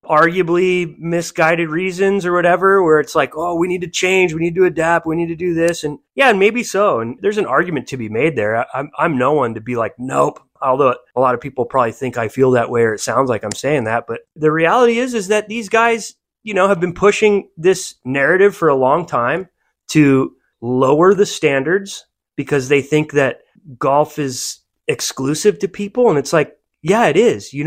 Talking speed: 215 wpm